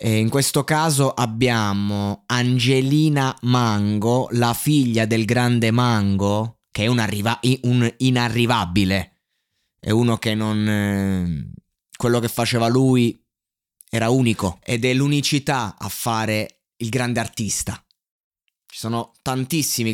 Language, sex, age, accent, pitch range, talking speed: Italian, male, 20-39, native, 110-135 Hz, 115 wpm